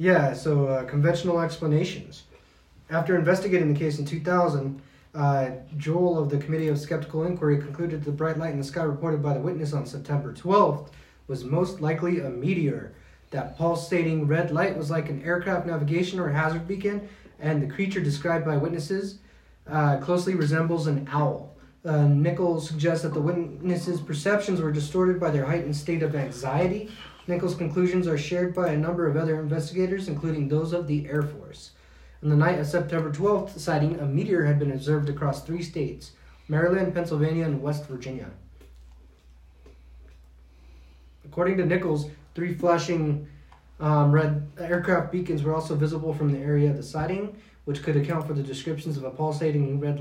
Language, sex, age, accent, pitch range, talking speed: English, male, 30-49, American, 145-170 Hz, 170 wpm